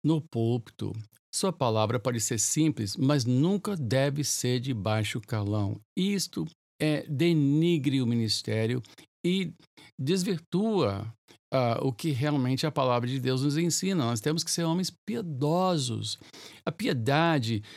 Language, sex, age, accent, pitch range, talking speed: Portuguese, male, 60-79, Brazilian, 110-160 Hz, 125 wpm